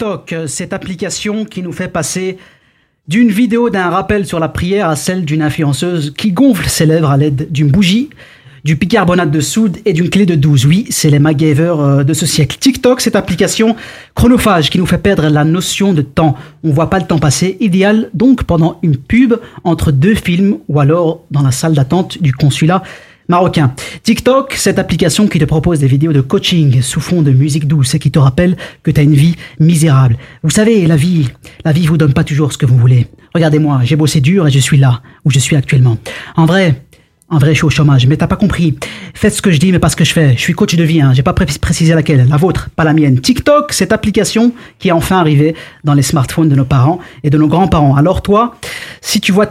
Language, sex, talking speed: French, male, 225 wpm